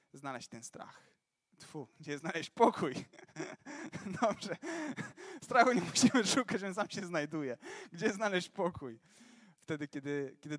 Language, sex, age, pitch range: Polish, male, 20-39, 165-220 Hz